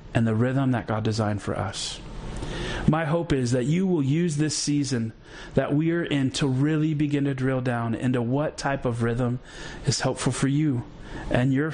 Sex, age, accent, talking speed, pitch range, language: male, 40-59, American, 195 wpm, 115-145 Hz, English